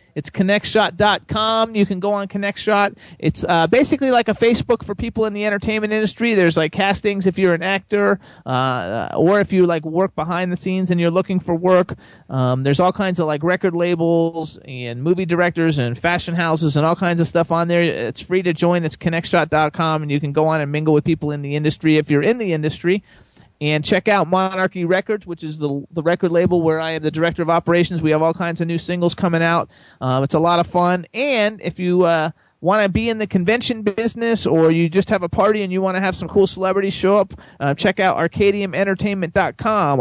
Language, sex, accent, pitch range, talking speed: English, male, American, 160-195 Hz, 220 wpm